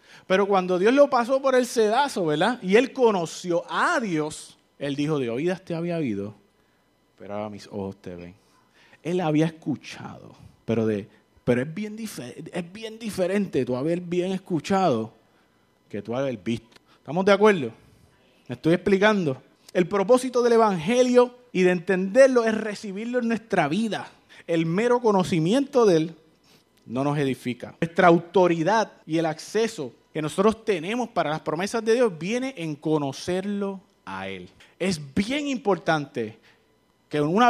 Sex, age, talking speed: male, 30-49, 155 wpm